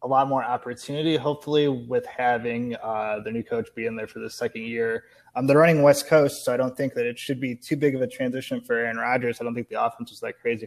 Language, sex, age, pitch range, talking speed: English, male, 20-39, 115-135 Hz, 265 wpm